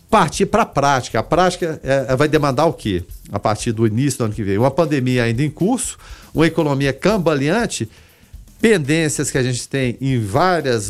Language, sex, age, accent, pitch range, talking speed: Portuguese, male, 50-69, Brazilian, 115-185 Hz, 195 wpm